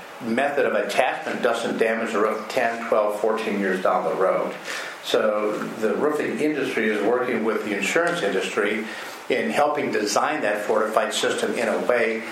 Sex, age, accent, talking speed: male, 50-69, American, 160 wpm